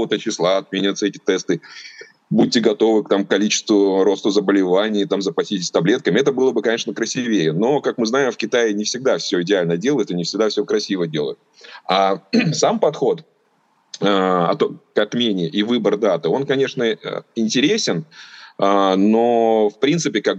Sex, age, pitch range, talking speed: male, 30-49, 90-115 Hz, 150 wpm